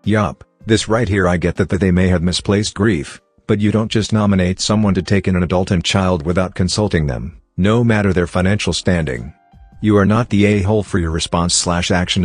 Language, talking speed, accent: English, 210 wpm, American